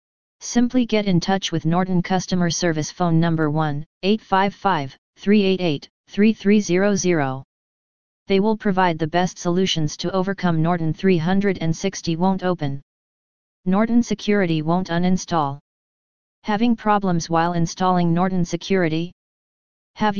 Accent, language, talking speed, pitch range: American, English, 100 wpm, 170-195 Hz